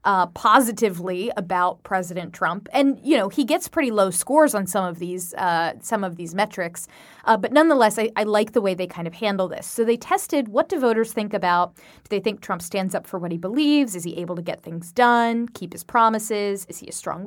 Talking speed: 235 wpm